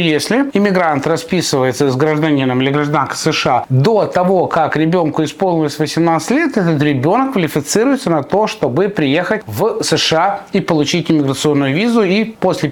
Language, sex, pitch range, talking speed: Russian, male, 150-200 Hz, 140 wpm